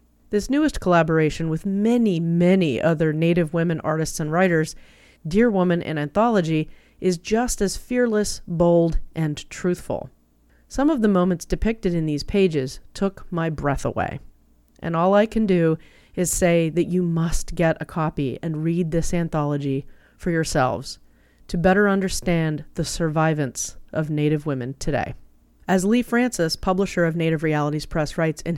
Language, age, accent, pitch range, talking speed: English, 30-49, American, 155-195 Hz, 155 wpm